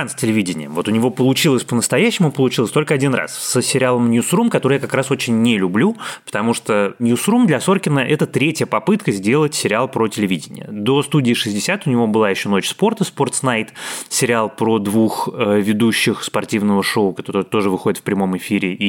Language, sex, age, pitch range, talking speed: Russian, male, 20-39, 105-150 Hz, 180 wpm